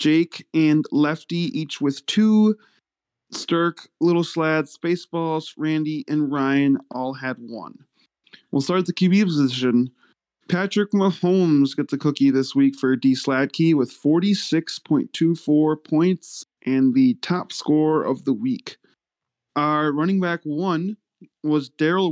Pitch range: 140-170 Hz